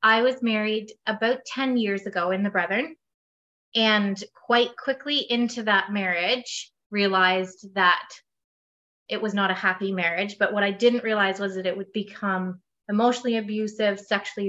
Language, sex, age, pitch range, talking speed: English, female, 20-39, 190-225 Hz, 155 wpm